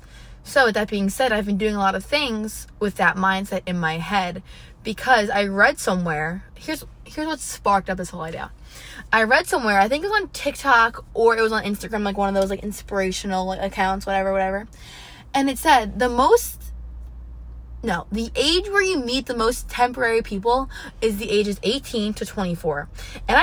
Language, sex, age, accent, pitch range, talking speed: English, female, 20-39, American, 180-235 Hz, 190 wpm